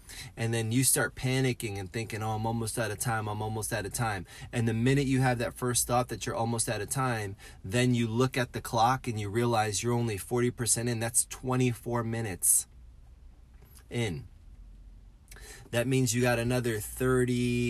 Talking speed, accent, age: 185 wpm, American, 30-49